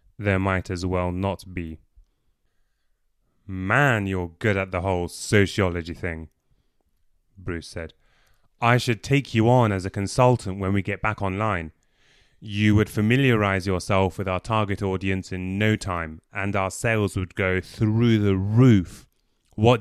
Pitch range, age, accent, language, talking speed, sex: 90-110 Hz, 30-49, British, English, 150 wpm, male